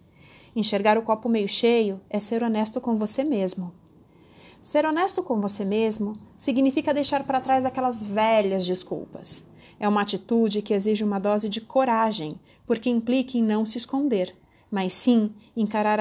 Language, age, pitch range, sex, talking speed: Portuguese, 30-49, 210-260 Hz, female, 155 wpm